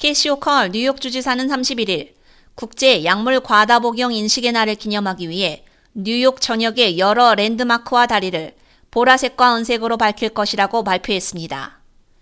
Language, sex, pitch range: Korean, female, 215-255 Hz